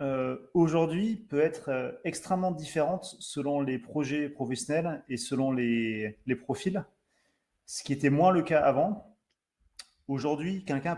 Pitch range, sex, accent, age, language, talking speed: 120-155 Hz, male, French, 30-49, French, 135 wpm